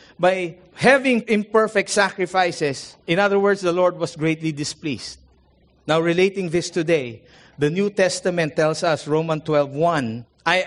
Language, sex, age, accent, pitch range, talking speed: English, male, 50-69, Filipino, 180-235 Hz, 140 wpm